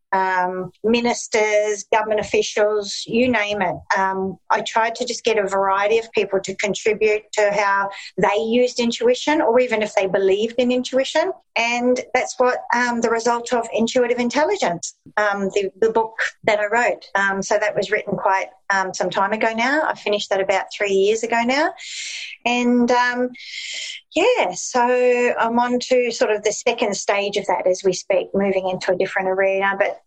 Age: 40-59